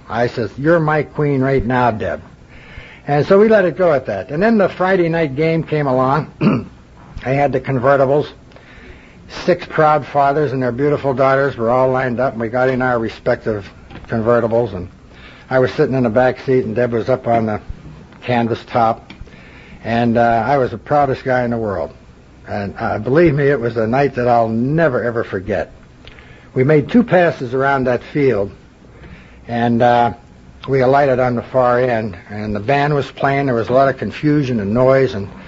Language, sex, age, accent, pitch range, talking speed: English, male, 60-79, American, 115-145 Hz, 195 wpm